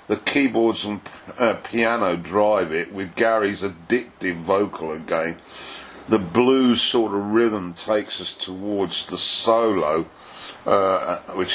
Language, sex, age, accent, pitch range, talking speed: English, male, 50-69, British, 100-120 Hz, 125 wpm